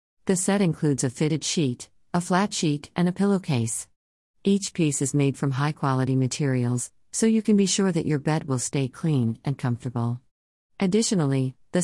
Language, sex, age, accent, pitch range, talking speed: English, female, 50-69, American, 130-170 Hz, 175 wpm